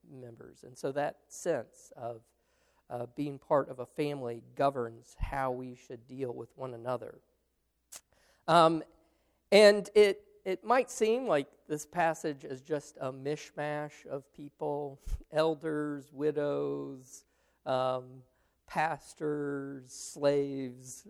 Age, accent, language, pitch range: 40-59, American, English, 130-160 Hz